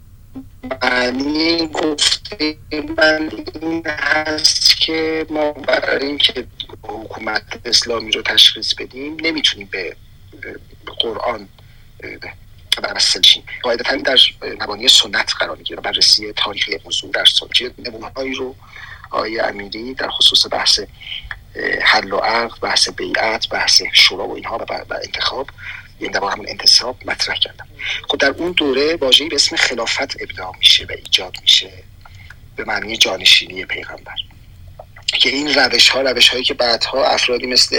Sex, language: male, Persian